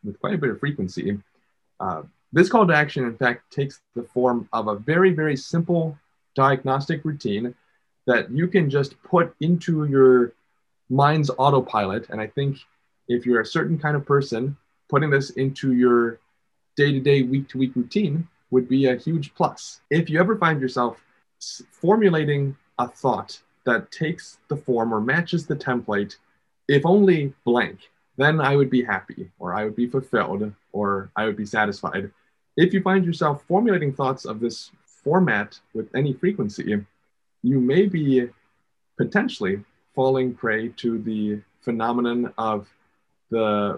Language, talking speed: English, 150 wpm